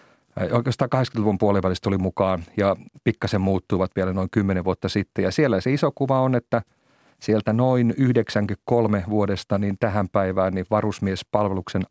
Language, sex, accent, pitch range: Finnish, male, native, 95-115 Hz